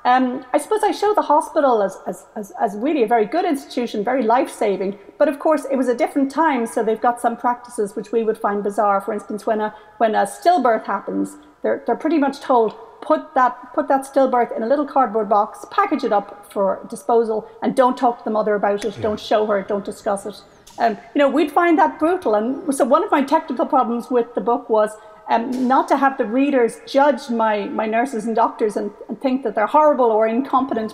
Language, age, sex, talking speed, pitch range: English, 40-59, female, 215 wpm, 220-275 Hz